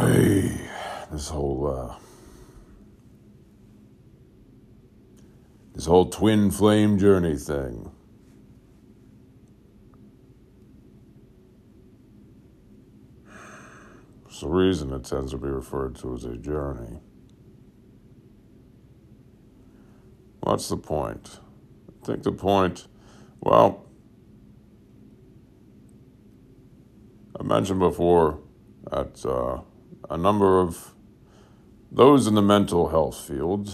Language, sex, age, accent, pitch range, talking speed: English, male, 50-69, American, 75-100 Hz, 75 wpm